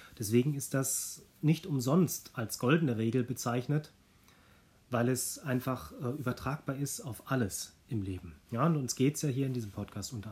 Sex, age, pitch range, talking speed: male, 30-49, 100-140 Hz, 165 wpm